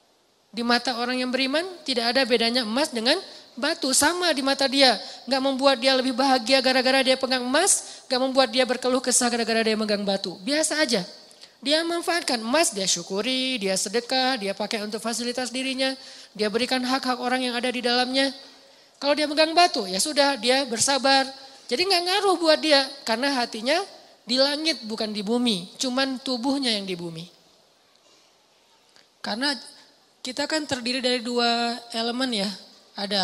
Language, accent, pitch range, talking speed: Indonesian, native, 230-285 Hz, 160 wpm